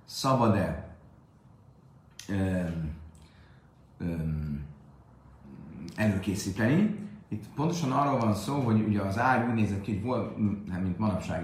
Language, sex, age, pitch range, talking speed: Hungarian, male, 30-49, 90-125 Hz, 105 wpm